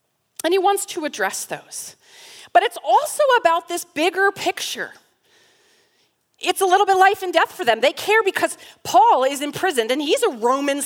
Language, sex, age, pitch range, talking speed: English, female, 40-59, 215-360 Hz, 175 wpm